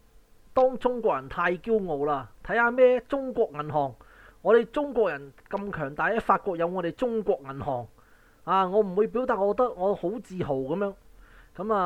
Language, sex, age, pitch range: Chinese, male, 20-39, 145-205 Hz